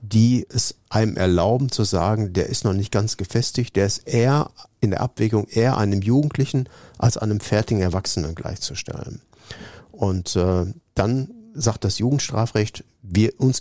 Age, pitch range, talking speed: 50-69, 100-125 Hz, 145 wpm